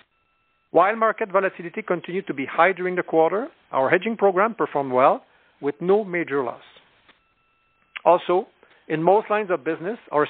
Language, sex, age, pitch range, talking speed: English, male, 50-69, 145-195 Hz, 150 wpm